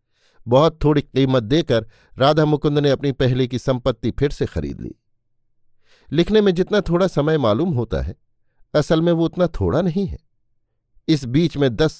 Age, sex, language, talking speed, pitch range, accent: 50-69, male, Hindi, 170 wpm, 115-150 Hz, native